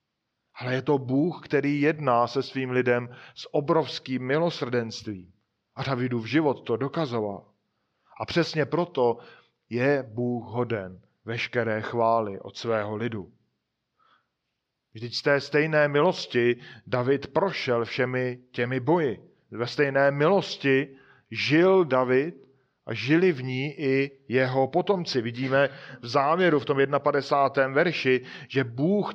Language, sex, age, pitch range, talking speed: Czech, male, 40-59, 120-150 Hz, 125 wpm